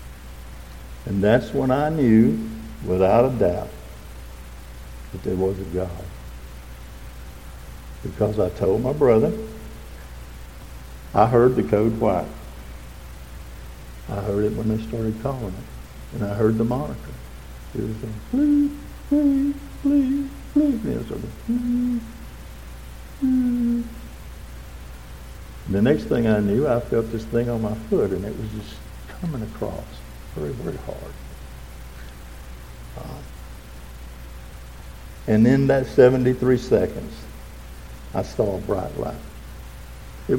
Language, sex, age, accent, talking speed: English, male, 60-79, American, 110 wpm